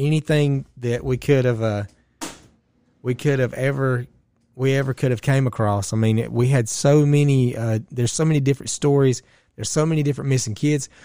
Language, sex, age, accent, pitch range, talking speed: English, male, 30-49, American, 115-140 Hz, 190 wpm